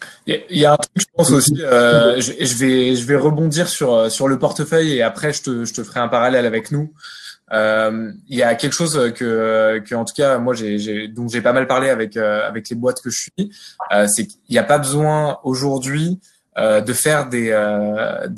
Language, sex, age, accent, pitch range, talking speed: French, male, 20-39, French, 115-155 Hz, 220 wpm